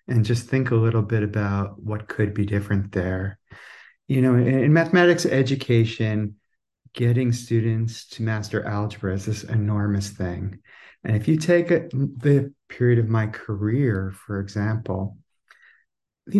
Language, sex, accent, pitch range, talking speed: English, male, American, 105-160 Hz, 145 wpm